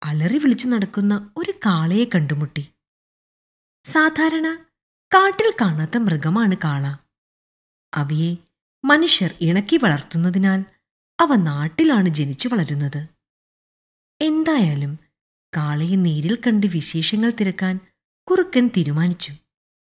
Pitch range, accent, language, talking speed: 155-240 Hz, native, Malayalam, 80 wpm